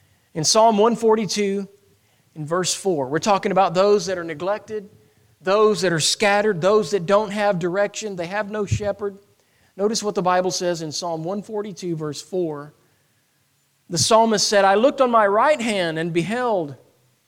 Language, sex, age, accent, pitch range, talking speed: English, male, 40-59, American, 125-190 Hz, 165 wpm